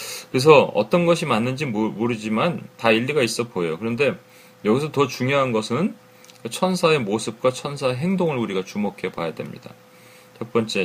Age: 40-59